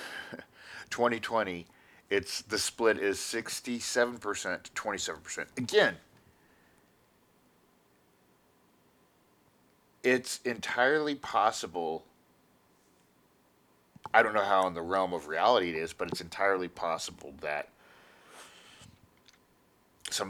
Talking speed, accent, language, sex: 85 wpm, American, English, male